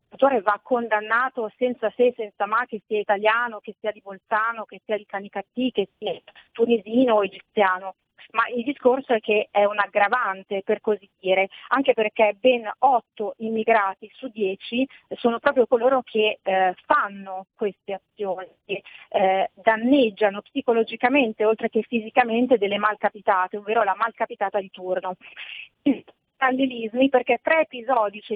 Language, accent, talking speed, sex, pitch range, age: Italian, native, 140 wpm, female, 200-245 Hz, 30-49